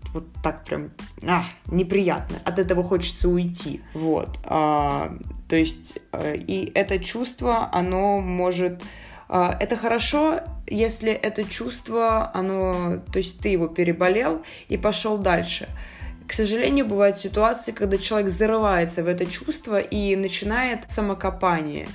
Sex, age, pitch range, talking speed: female, 20-39, 170-205 Hz, 120 wpm